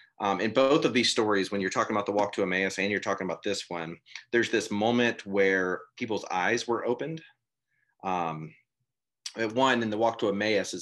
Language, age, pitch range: English, 30-49, 95-120 Hz